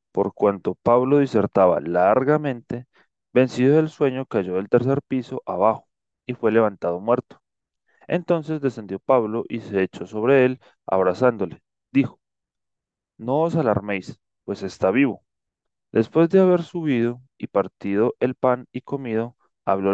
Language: Spanish